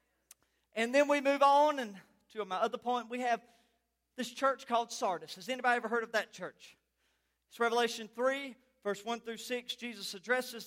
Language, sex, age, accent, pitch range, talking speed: English, male, 40-59, American, 210-265 Hz, 175 wpm